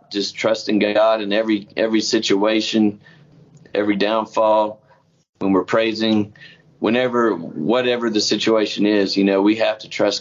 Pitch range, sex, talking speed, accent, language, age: 100-115 Hz, male, 135 wpm, American, English, 30-49